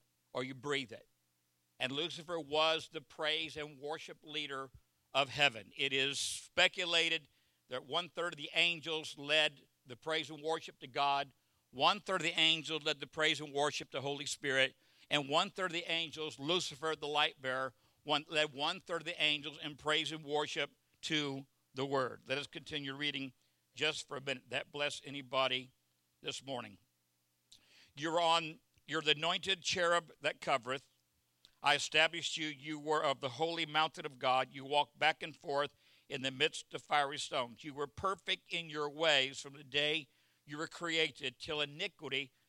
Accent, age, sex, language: American, 60-79, male, English